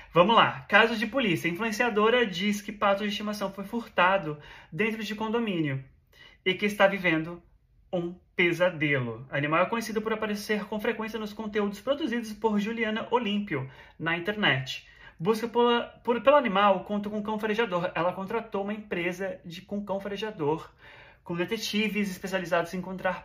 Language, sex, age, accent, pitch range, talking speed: Portuguese, male, 30-49, Brazilian, 150-210 Hz, 160 wpm